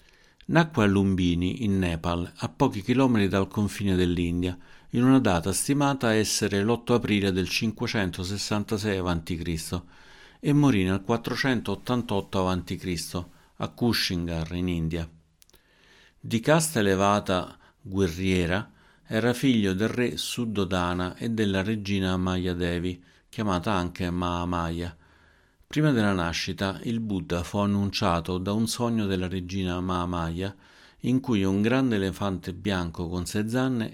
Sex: male